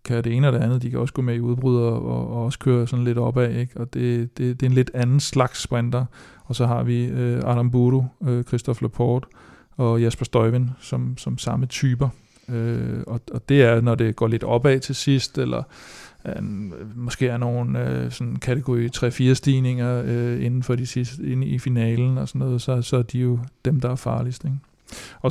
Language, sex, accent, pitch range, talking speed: Danish, male, native, 120-130 Hz, 215 wpm